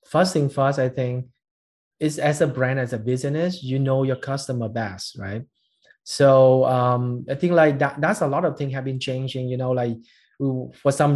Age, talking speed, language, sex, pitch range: 20-39, 200 wpm, Vietnamese, male, 125-155 Hz